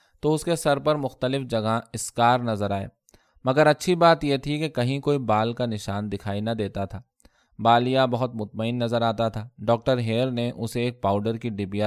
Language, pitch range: Urdu, 110-135 Hz